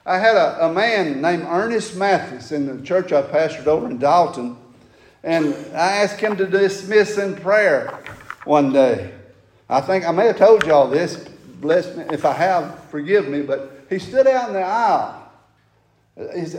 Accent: American